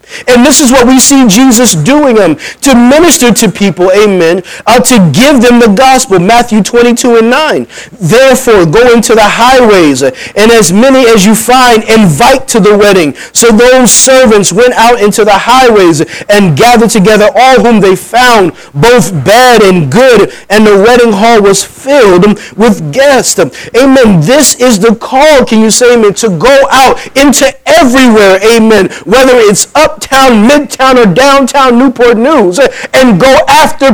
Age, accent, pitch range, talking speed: 30-49, American, 190-255 Hz, 165 wpm